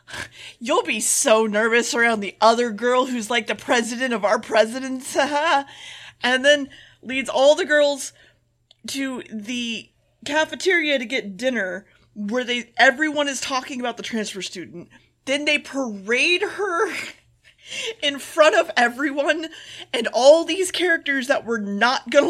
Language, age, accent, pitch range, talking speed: English, 30-49, American, 225-300 Hz, 140 wpm